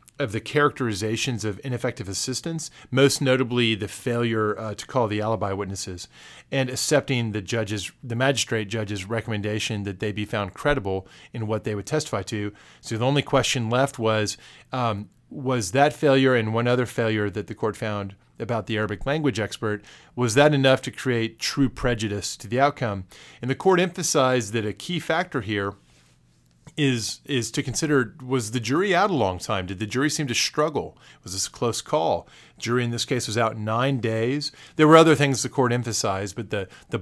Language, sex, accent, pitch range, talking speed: English, male, American, 110-135 Hz, 190 wpm